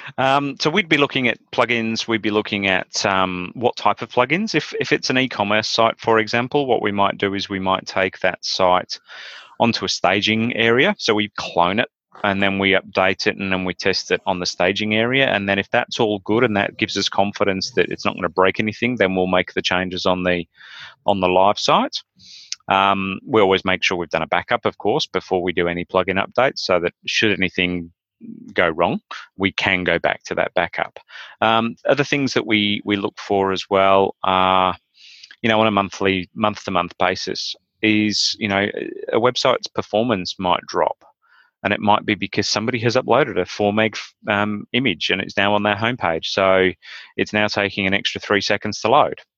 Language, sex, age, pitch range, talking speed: English, male, 30-49, 95-110 Hz, 210 wpm